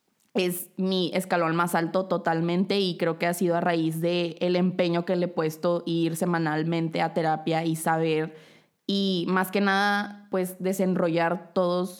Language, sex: Spanish, female